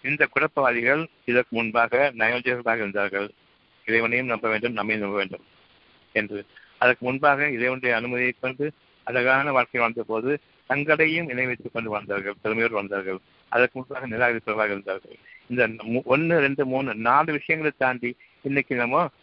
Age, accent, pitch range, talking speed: 60-79, native, 115-135 Hz, 125 wpm